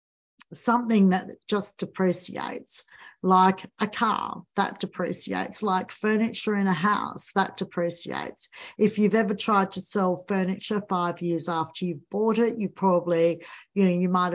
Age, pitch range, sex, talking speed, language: 60-79, 175-200 Hz, female, 145 wpm, English